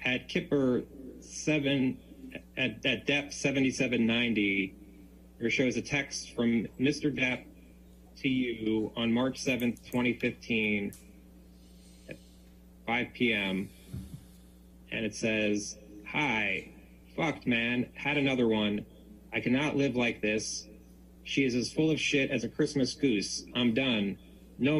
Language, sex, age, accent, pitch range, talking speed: English, male, 30-49, American, 110-140 Hz, 120 wpm